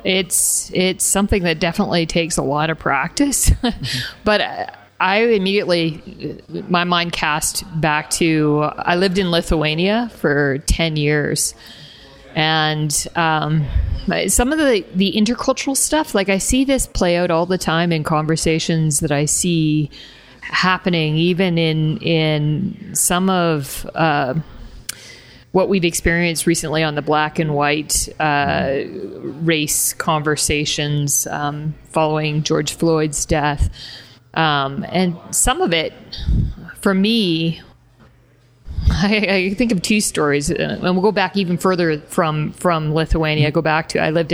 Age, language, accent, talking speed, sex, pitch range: 40-59, English, American, 135 wpm, female, 155-185 Hz